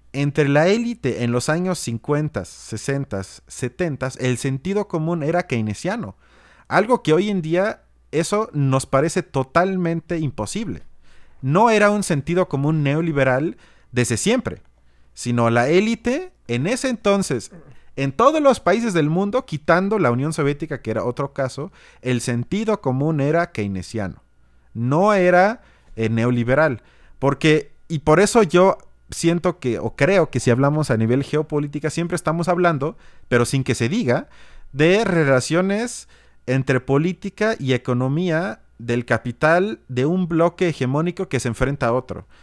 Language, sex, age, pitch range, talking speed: Spanish, male, 30-49, 125-180 Hz, 140 wpm